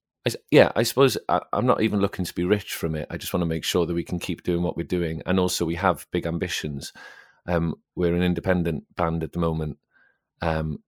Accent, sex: British, male